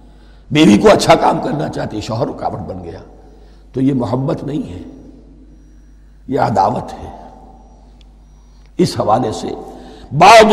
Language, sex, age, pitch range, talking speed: Urdu, male, 60-79, 150-220 Hz, 125 wpm